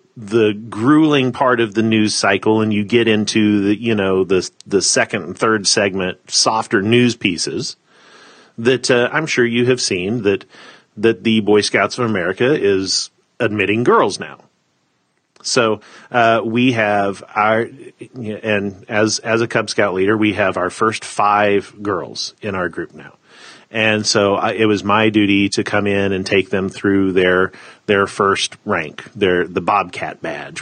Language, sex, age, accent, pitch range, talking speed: English, male, 40-59, American, 100-115 Hz, 165 wpm